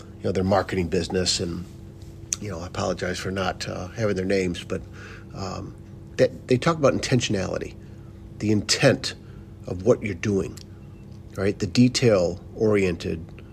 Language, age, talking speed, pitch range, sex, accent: English, 50-69, 135 wpm, 105-120 Hz, male, American